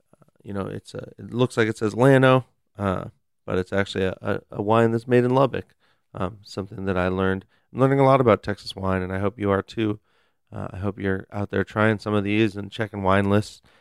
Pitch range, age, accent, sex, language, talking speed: 95-110 Hz, 30-49, American, male, English, 235 wpm